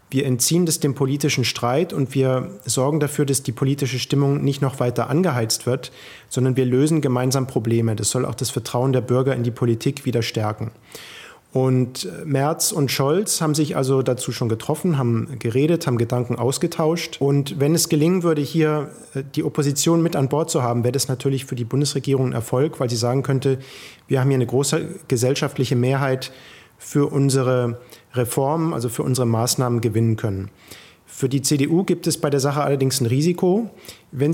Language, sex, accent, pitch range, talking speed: German, male, German, 125-150 Hz, 180 wpm